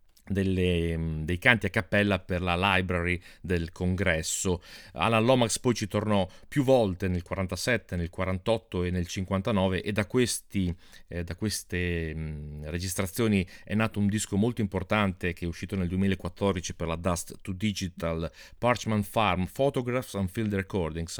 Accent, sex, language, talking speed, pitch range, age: native, male, Italian, 150 wpm, 90-105 Hz, 40-59